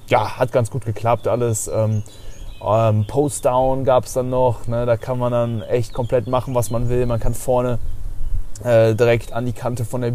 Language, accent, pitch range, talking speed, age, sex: German, German, 110-125 Hz, 190 wpm, 20-39, male